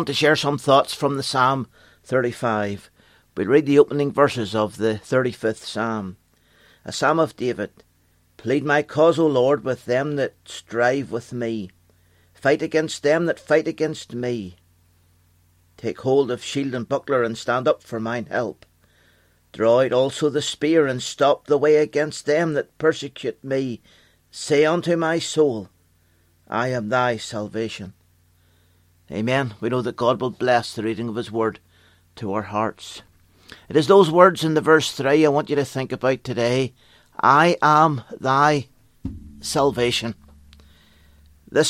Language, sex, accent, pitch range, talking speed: English, male, British, 95-145 Hz, 155 wpm